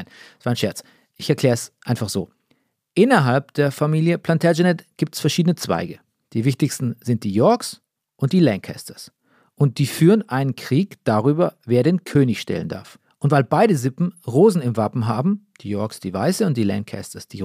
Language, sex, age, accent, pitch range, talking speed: German, male, 40-59, German, 125-175 Hz, 180 wpm